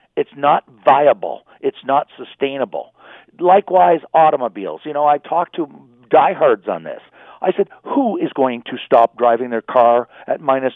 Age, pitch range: 50-69, 125-180 Hz